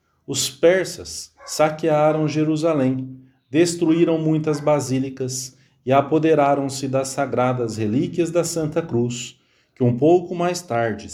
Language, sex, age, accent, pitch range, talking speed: English, male, 40-59, Brazilian, 125-160 Hz, 110 wpm